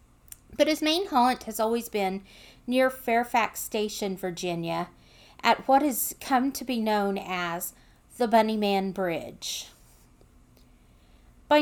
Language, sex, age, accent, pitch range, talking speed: English, female, 40-59, American, 195-255 Hz, 125 wpm